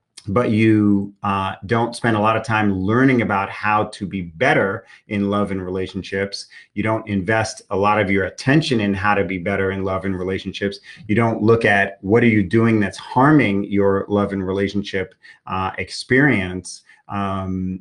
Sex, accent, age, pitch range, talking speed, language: male, American, 30-49, 95-110 Hz, 180 wpm, English